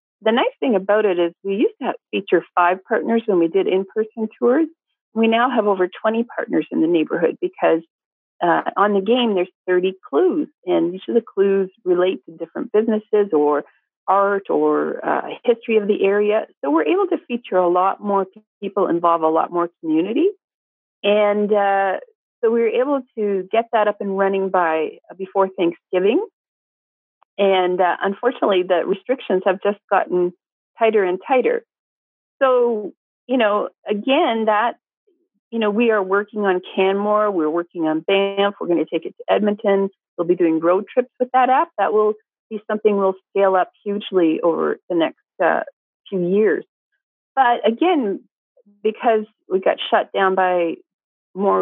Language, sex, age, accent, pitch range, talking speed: English, female, 40-59, American, 185-245 Hz, 170 wpm